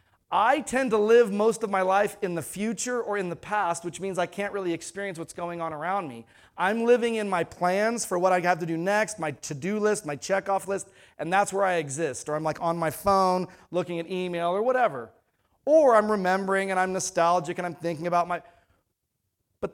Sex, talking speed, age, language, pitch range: male, 220 wpm, 30-49, English, 155-210 Hz